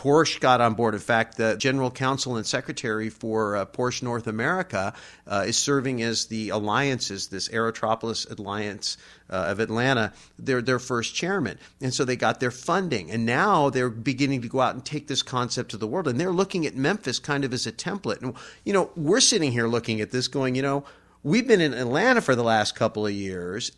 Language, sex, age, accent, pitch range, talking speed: English, male, 50-69, American, 115-150 Hz, 210 wpm